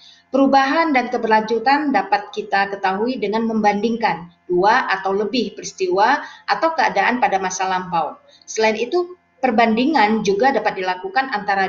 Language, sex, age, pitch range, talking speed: Indonesian, female, 30-49, 190-255 Hz, 125 wpm